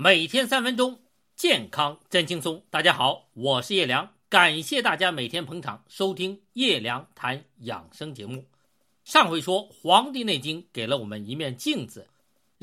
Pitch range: 135-210 Hz